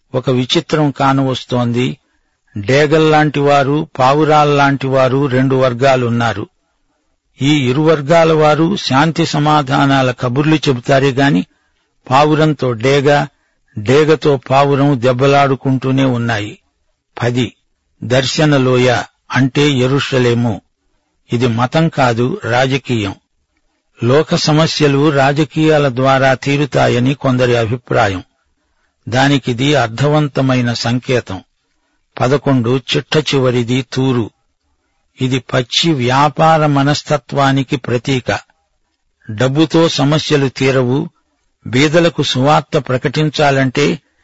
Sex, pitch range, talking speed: male, 125-150 Hz, 75 wpm